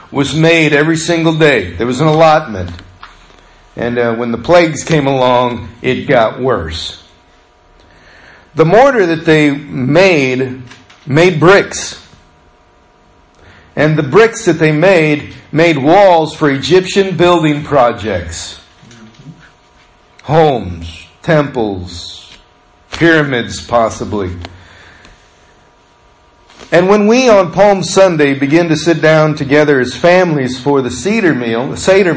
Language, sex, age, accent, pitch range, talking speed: English, male, 50-69, American, 110-165 Hz, 115 wpm